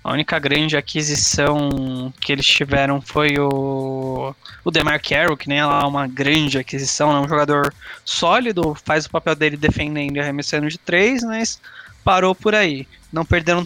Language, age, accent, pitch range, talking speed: English, 20-39, Brazilian, 145-190 Hz, 165 wpm